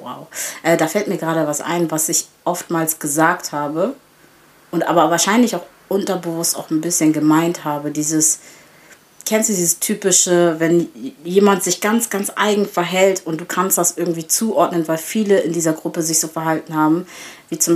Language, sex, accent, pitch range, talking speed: German, female, German, 160-190 Hz, 170 wpm